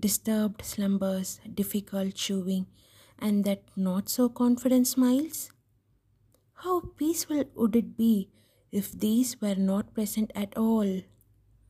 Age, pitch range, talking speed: 20-39, 175-230 Hz, 105 wpm